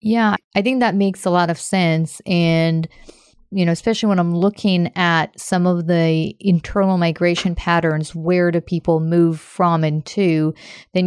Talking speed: 170 wpm